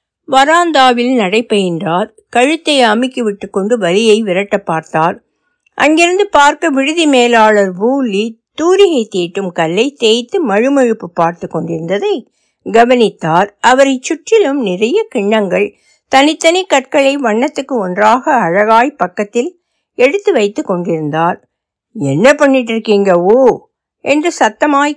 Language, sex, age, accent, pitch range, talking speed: Tamil, female, 60-79, native, 190-270 Hz, 95 wpm